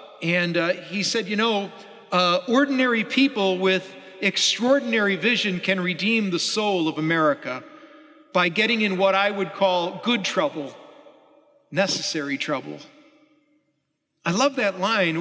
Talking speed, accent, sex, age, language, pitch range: 130 wpm, American, male, 50-69, English, 160-240 Hz